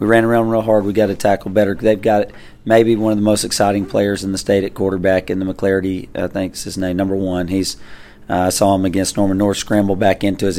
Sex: male